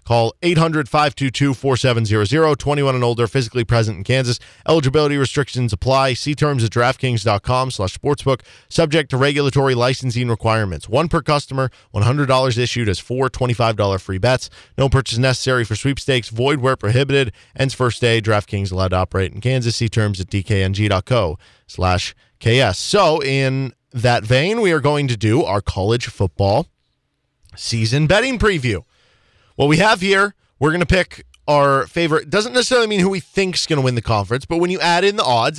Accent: American